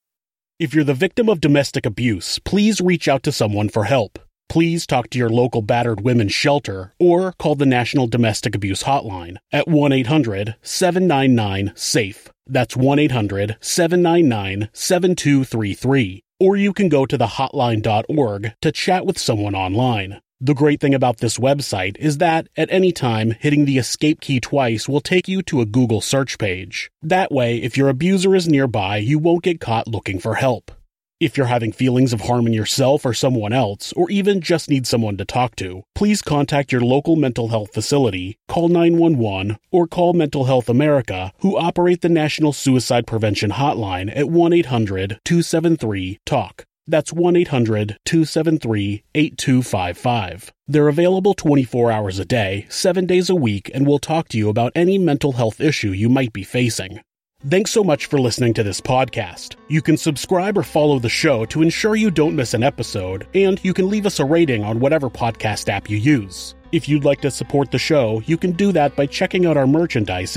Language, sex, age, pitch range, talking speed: English, male, 30-49, 110-160 Hz, 170 wpm